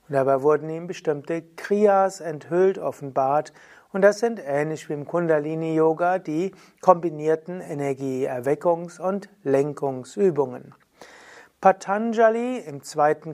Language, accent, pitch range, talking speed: German, German, 145-195 Hz, 105 wpm